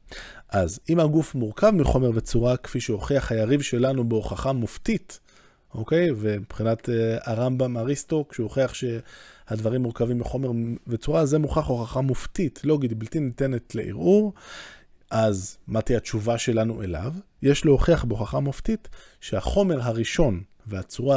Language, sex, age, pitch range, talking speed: Hebrew, male, 20-39, 110-145 Hz, 130 wpm